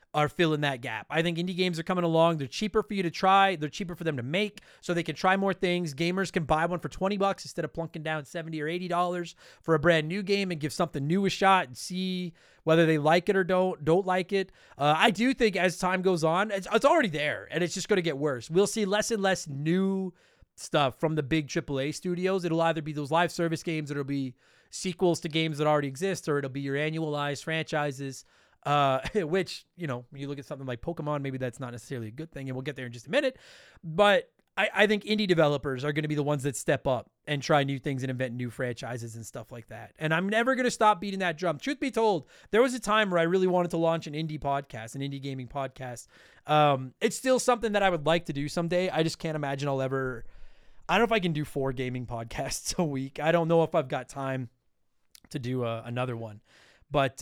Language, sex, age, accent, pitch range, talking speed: English, male, 30-49, American, 140-185 Hz, 250 wpm